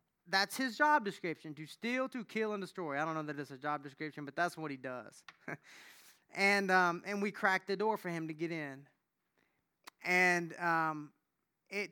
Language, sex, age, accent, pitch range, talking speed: English, male, 20-39, American, 165-200 Hz, 190 wpm